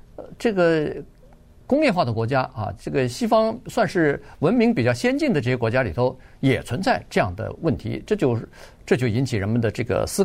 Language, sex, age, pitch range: Chinese, male, 50-69, 120-170 Hz